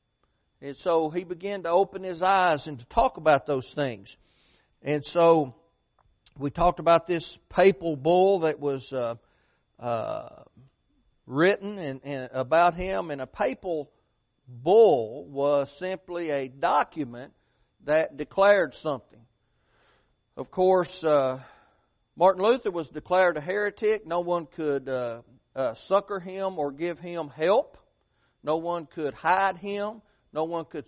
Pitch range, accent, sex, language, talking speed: 135-175 Hz, American, male, English, 135 wpm